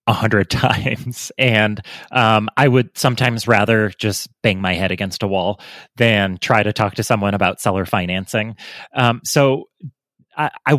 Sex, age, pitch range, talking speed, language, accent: male, 30-49, 100-125 Hz, 155 wpm, English, American